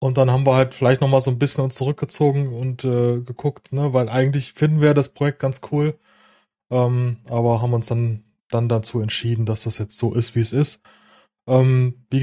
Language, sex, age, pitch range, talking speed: German, male, 20-39, 120-140 Hz, 210 wpm